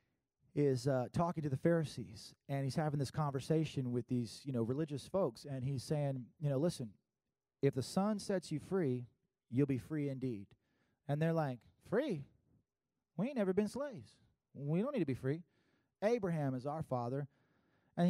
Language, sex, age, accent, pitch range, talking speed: English, male, 30-49, American, 135-185 Hz, 175 wpm